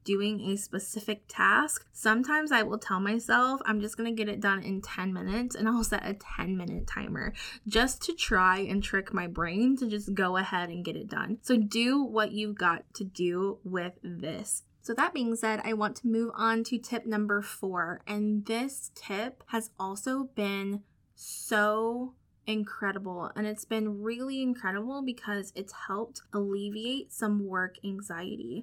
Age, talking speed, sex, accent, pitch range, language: 20-39, 175 wpm, female, American, 195-230 Hz, English